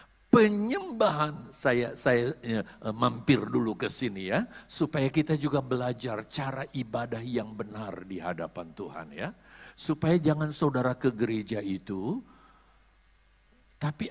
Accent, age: native, 50-69